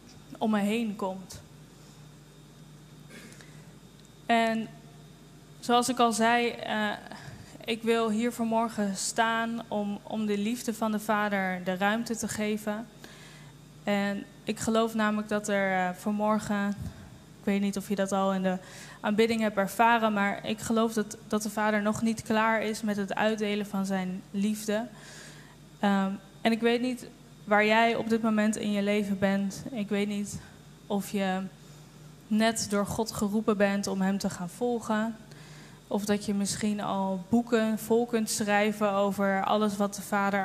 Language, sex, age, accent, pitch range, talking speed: Dutch, female, 10-29, Dutch, 195-220 Hz, 155 wpm